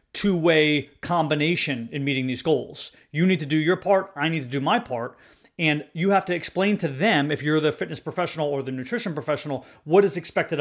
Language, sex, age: English, male, 30-49